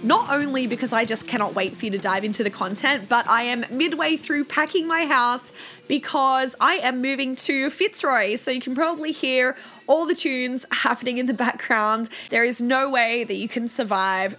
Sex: female